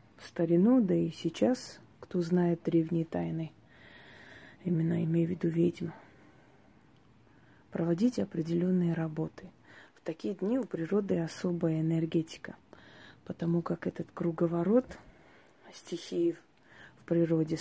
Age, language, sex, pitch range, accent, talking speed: 30-49, Russian, female, 160-185 Hz, native, 100 wpm